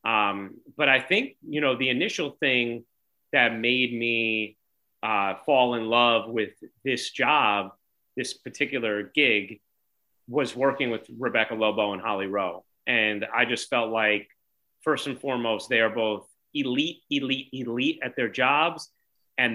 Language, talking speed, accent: English, 145 wpm, American